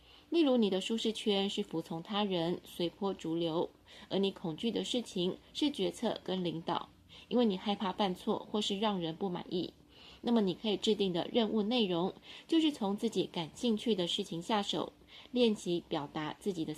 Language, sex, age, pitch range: Chinese, female, 20-39, 180-220 Hz